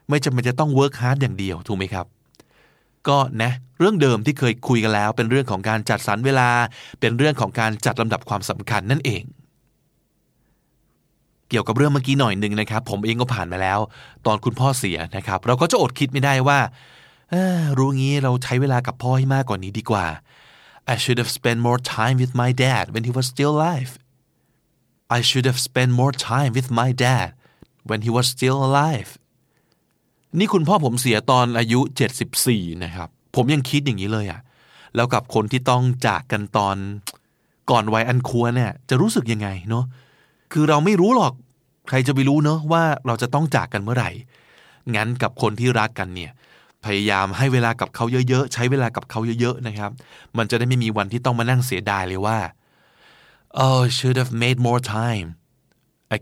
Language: Thai